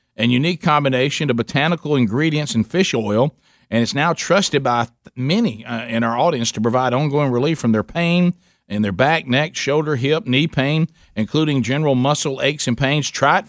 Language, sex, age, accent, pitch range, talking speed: English, male, 50-69, American, 120-155 Hz, 185 wpm